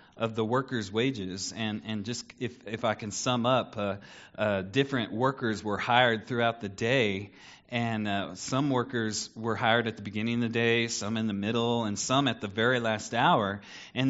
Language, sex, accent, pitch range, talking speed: English, male, American, 115-155 Hz, 195 wpm